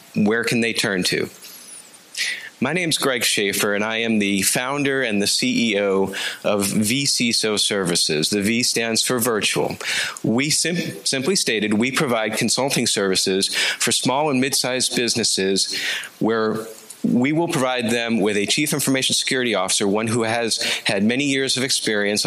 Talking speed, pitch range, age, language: 155 wpm, 100-130 Hz, 40-59, English